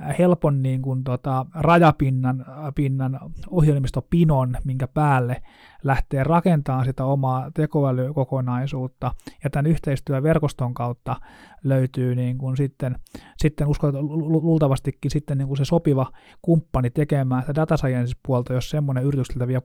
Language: Finnish